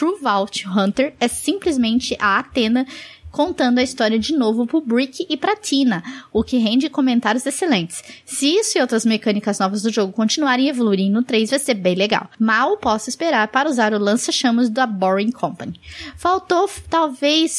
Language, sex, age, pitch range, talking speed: Portuguese, female, 10-29, 220-285 Hz, 175 wpm